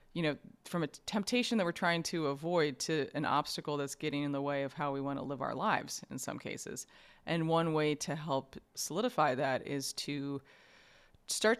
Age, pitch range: 30-49, 140-165 Hz